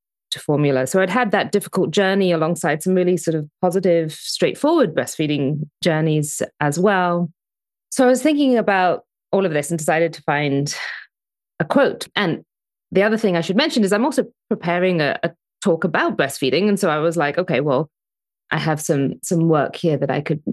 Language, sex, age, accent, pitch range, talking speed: English, female, 30-49, British, 165-215 Hz, 185 wpm